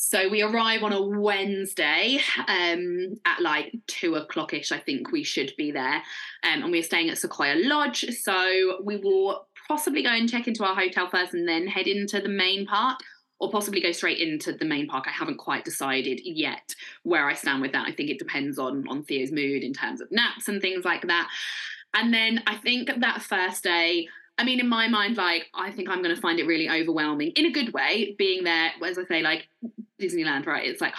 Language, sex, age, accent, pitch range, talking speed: English, female, 20-39, British, 185-305 Hz, 215 wpm